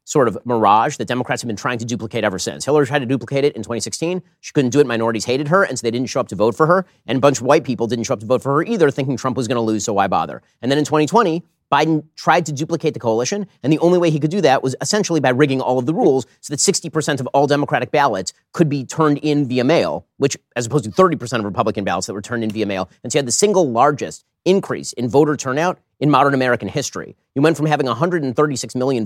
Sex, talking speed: male, 275 wpm